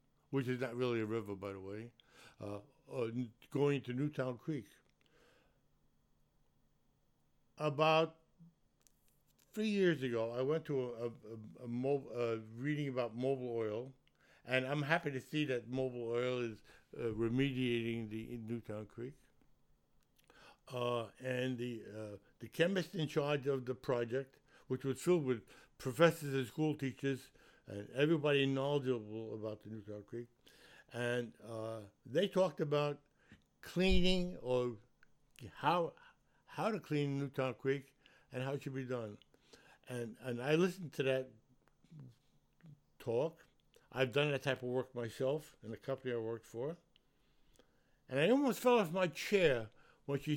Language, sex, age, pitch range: English, male, 60-79, 115-145 Hz